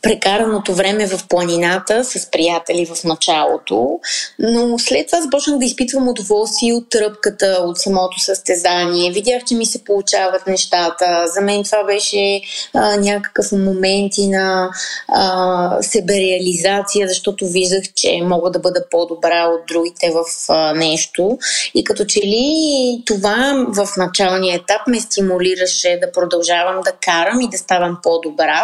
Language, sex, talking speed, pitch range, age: Bulgarian, female, 140 wpm, 175-230 Hz, 20-39